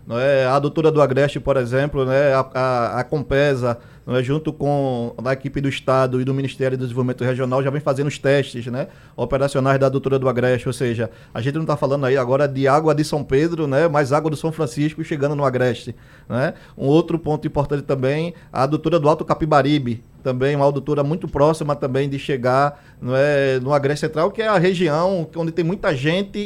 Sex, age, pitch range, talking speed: male, 20-39, 130-155 Hz, 215 wpm